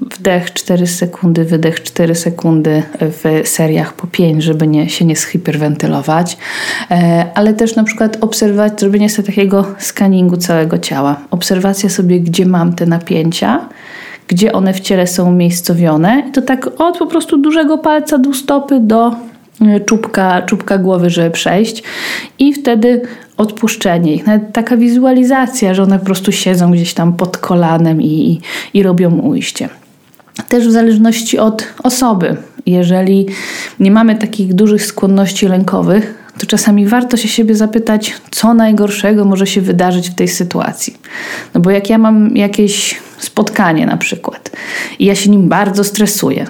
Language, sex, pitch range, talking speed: Polish, female, 180-225 Hz, 145 wpm